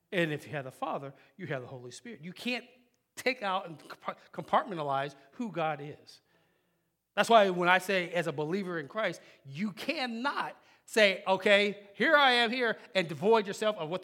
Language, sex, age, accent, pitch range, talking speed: English, male, 40-59, American, 155-215 Hz, 185 wpm